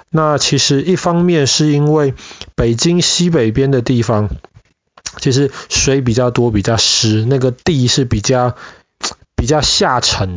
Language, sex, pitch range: Chinese, male, 110-145 Hz